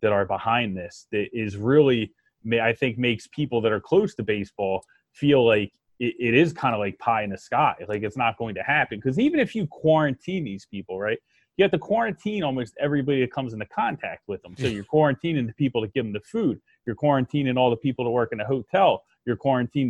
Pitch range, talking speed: 115-160 Hz, 230 wpm